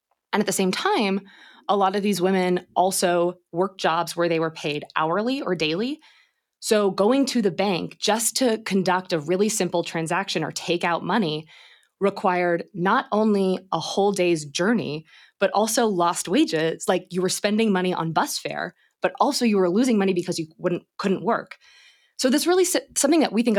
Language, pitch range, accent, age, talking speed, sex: English, 175-220 Hz, American, 20-39, 185 wpm, female